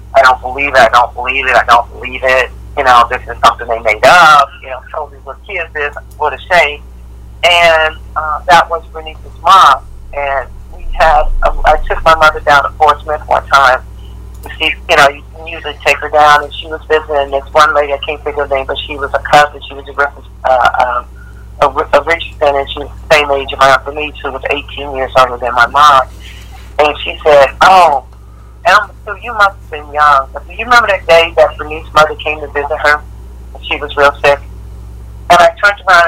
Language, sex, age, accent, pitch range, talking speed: English, male, 40-59, American, 120-155 Hz, 225 wpm